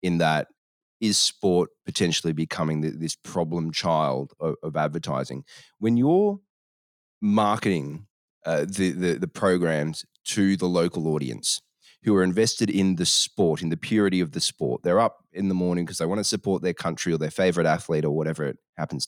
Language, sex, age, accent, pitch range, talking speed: English, male, 30-49, Australian, 80-95 Hz, 180 wpm